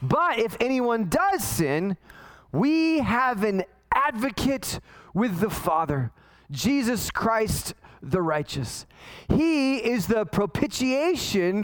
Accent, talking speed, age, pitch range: American, 105 wpm, 20-39, 200-285 Hz